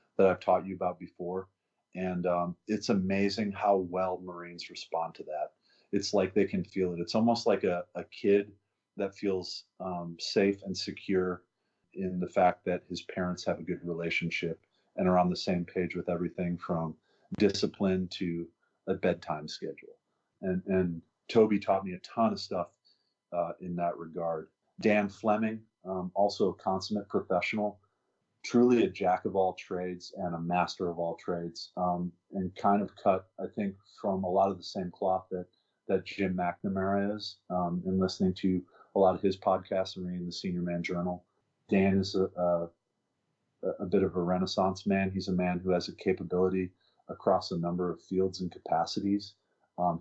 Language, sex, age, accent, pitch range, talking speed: English, male, 30-49, American, 90-100 Hz, 180 wpm